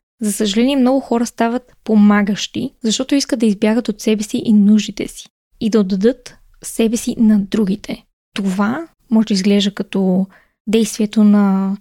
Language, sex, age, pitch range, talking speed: Bulgarian, female, 20-39, 210-245 Hz, 150 wpm